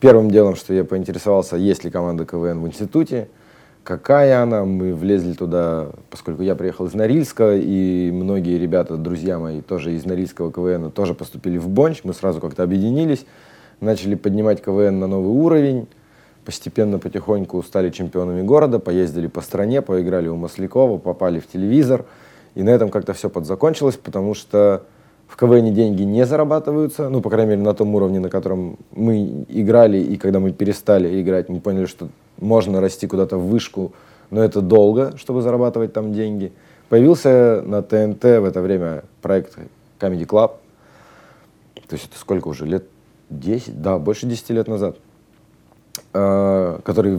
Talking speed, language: 160 wpm, Russian